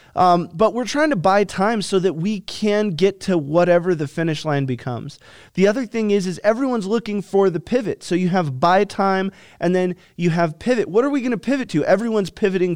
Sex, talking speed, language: male, 220 wpm, English